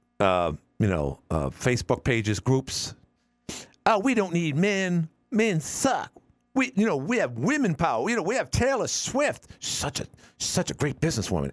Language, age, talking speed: English, 50-69, 175 wpm